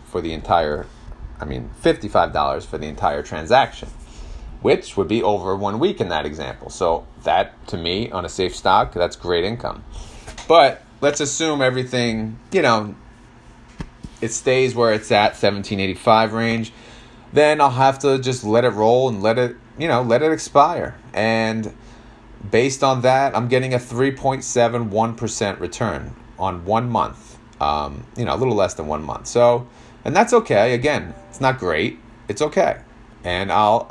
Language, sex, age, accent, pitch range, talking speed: English, male, 30-49, American, 95-120 Hz, 175 wpm